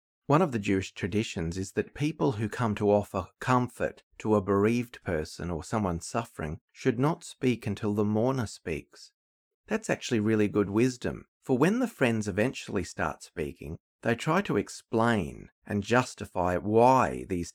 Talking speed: 160 wpm